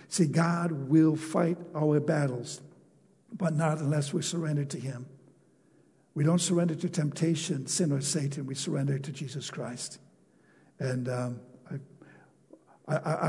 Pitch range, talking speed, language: 135-170 Hz, 135 wpm, English